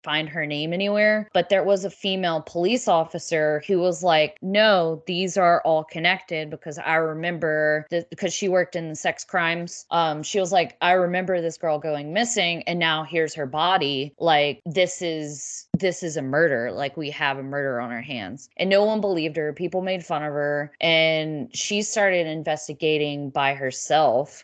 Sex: female